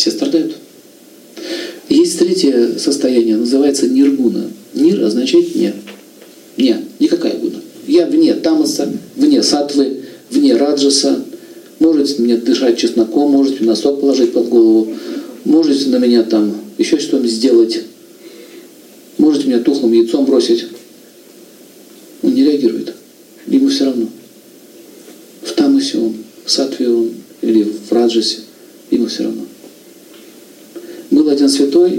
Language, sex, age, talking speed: Russian, male, 50-69, 115 wpm